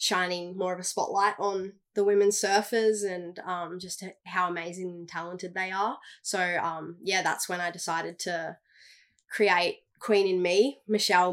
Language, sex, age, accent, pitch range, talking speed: English, female, 20-39, Australian, 175-190 Hz, 165 wpm